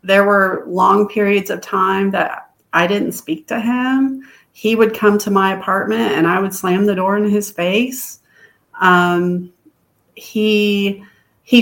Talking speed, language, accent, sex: 155 wpm, English, American, female